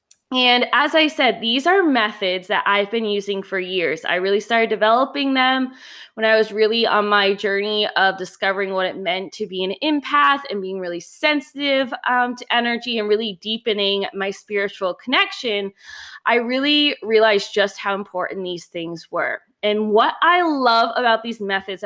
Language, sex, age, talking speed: English, female, 20-39, 175 wpm